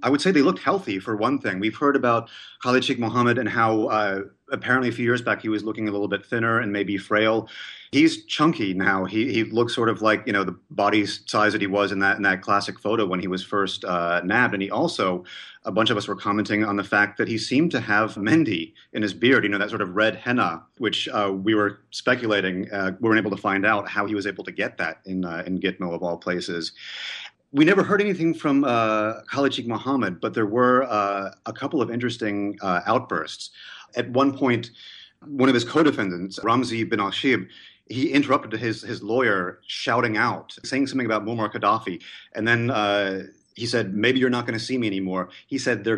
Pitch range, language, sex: 100-120 Hz, English, male